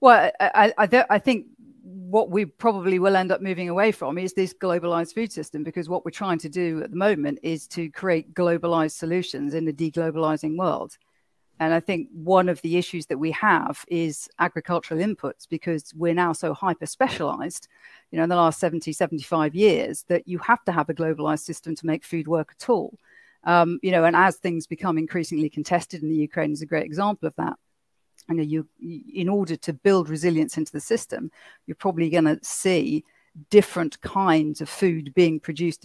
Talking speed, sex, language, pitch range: 195 wpm, female, English, 160-195 Hz